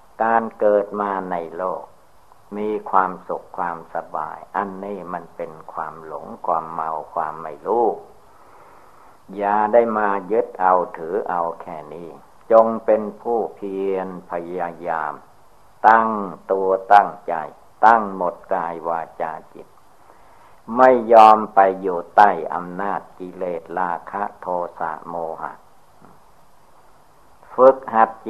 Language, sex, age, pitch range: Thai, male, 60-79, 90-105 Hz